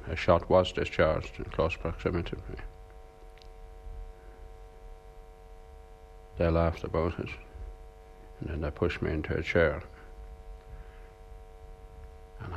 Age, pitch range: 60-79, 75-90 Hz